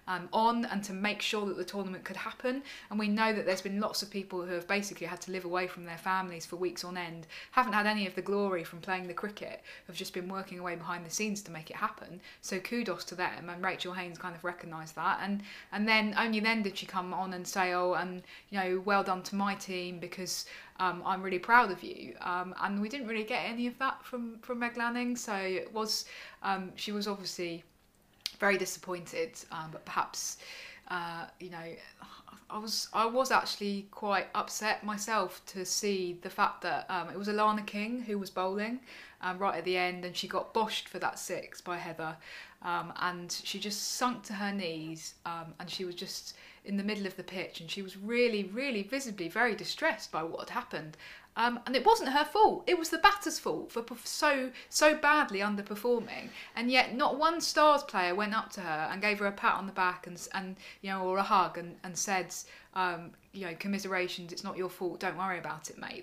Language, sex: English, female